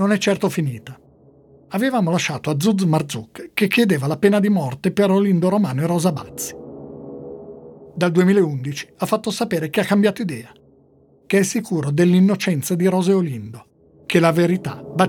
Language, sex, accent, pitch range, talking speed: Italian, male, native, 140-195 Hz, 165 wpm